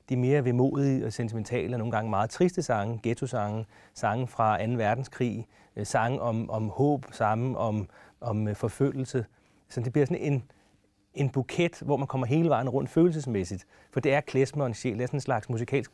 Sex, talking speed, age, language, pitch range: male, 175 wpm, 30-49, Danish, 115-140 Hz